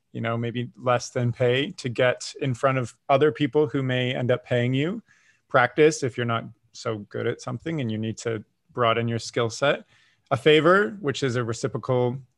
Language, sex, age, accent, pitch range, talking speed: English, male, 20-39, American, 115-135 Hz, 200 wpm